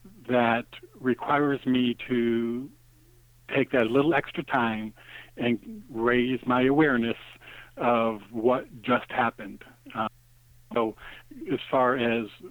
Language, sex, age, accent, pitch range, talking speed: English, male, 50-69, American, 115-130 Hz, 105 wpm